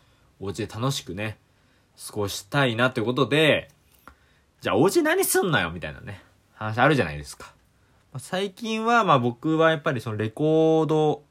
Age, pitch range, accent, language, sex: 20-39, 100-145 Hz, native, Japanese, male